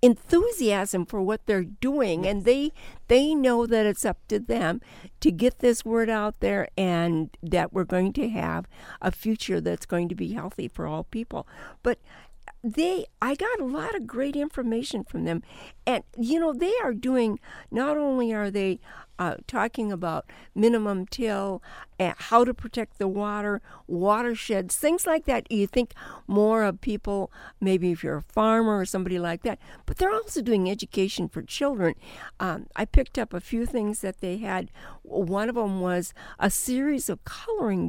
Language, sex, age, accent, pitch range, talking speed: English, female, 60-79, American, 190-250 Hz, 175 wpm